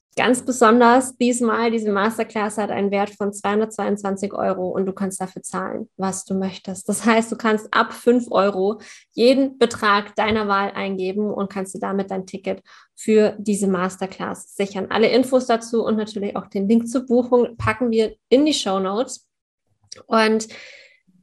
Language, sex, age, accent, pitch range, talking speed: German, female, 20-39, German, 200-235 Hz, 160 wpm